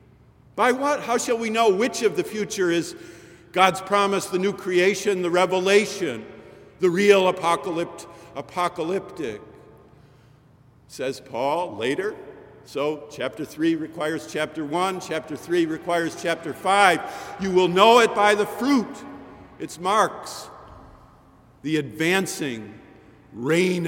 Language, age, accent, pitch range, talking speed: English, 50-69, American, 135-185 Hz, 120 wpm